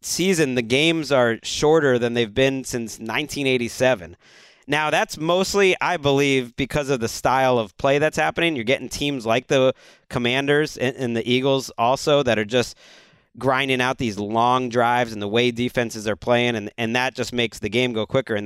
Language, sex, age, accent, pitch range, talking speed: English, male, 30-49, American, 130-170 Hz, 185 wpm